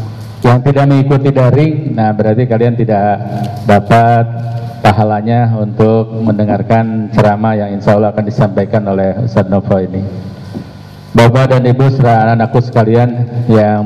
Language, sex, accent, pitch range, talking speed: Indonesian, male, native, 105-120 Hz, 115 wpm